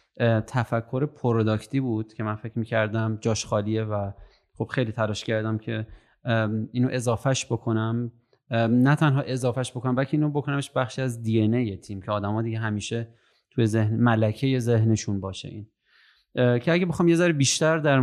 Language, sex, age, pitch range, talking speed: Persian, male, 30-49, 110-135 Hz, 165 wpm